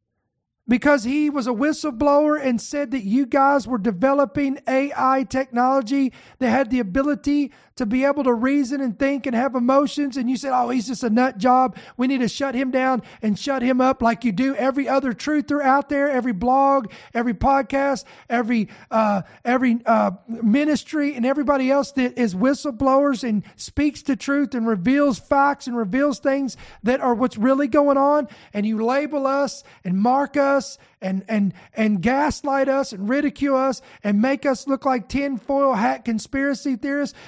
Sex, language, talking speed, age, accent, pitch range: male, English, 180 wpm, 40-59, American, 240-280 Hz